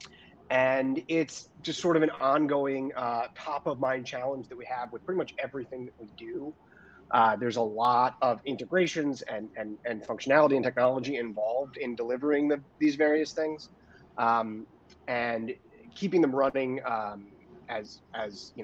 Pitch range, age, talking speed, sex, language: 115-145 Hz, 30-49, 160 wpm, male, Polish